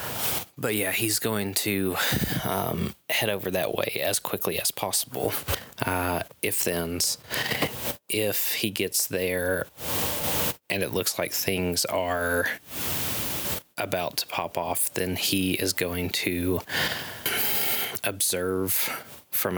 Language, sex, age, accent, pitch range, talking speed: English, male, 20-39, American, 90-95 Hz, 115 wpm